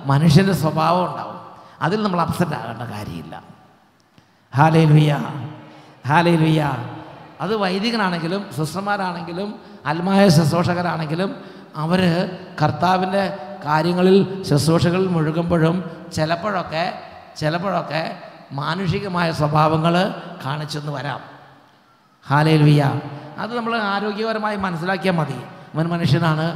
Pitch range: 155-195 Hz